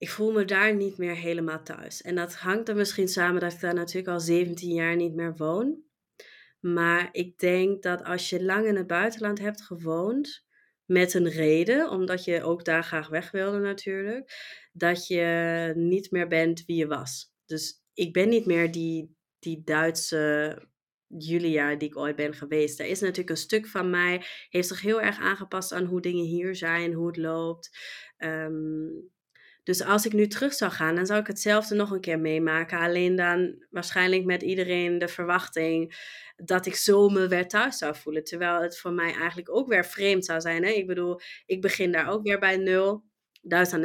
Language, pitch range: Dutch, 165-195 Hz